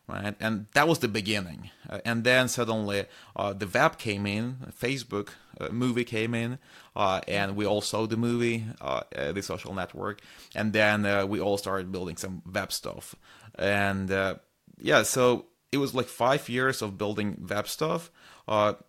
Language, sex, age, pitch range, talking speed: English, male, 30-49, 100-120 Hz, 175 wpm